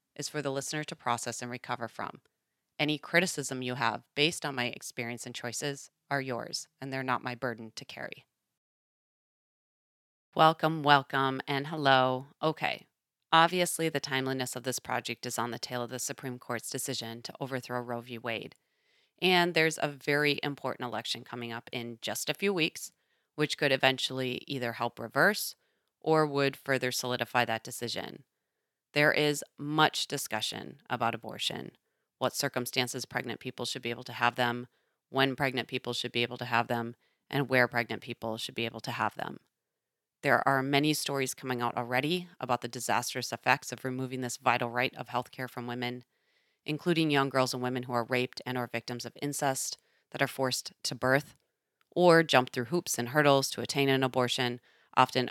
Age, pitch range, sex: 30-49, 120-140 Hz, female